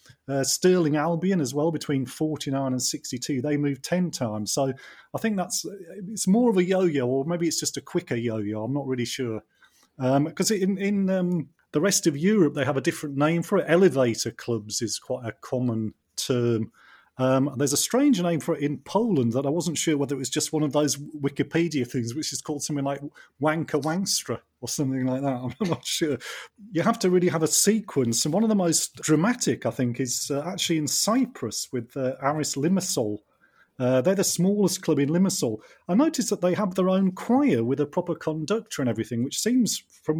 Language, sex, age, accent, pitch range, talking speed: English, male, 30-49, British, 130-180 Hz, 210 wpm